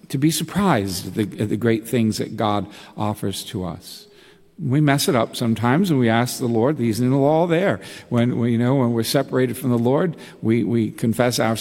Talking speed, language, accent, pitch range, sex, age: 210 wpm, English, American, 100-125 Hz, male, 50-69